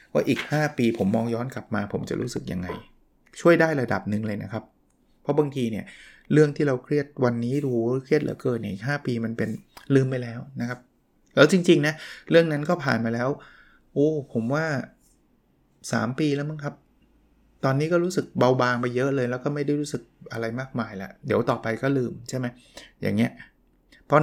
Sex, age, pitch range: male, 20-39, 115-145 Hz